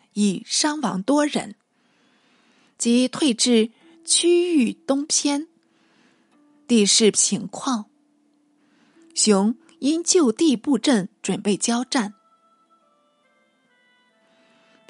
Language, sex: Chinese, female